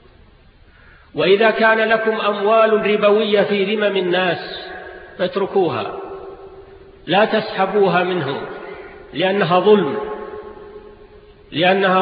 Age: 50-69